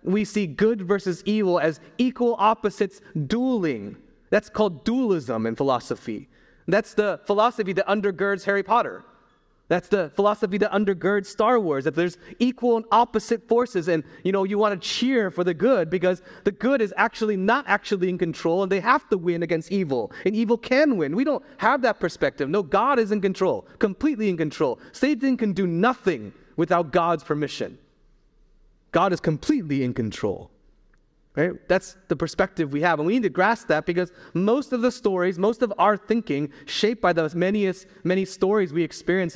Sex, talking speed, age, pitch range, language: male, 180 wpm, 30-49, 175-215 Hz, English